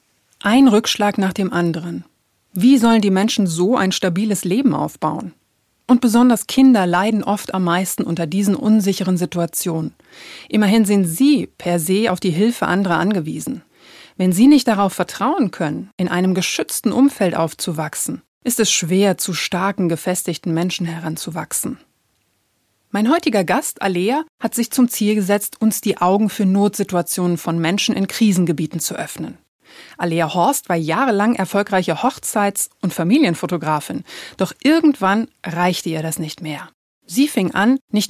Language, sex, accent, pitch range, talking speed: German, female, German, 175-235 Hz, 145 wpm